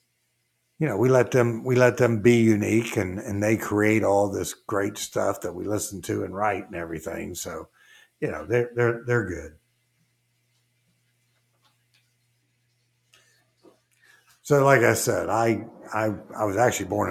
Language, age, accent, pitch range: English, 60-79, American, 105-125 Hz